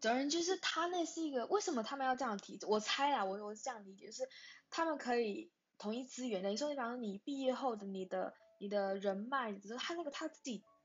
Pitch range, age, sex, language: 200-265 Hz, 10-29, female, Chinese